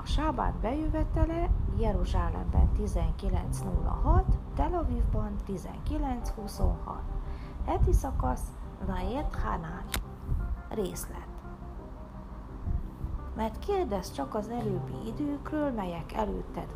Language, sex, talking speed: Hungarian, female, 70 wpm